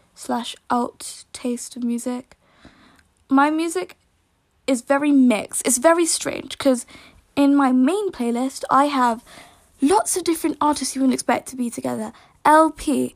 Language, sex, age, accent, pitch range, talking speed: English, female, 10-29, British, 250-295 Hz, 140 wpm